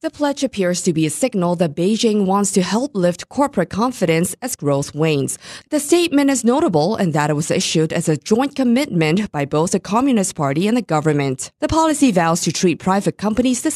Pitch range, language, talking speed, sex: 135-210 Hz, English, 205 wpm, female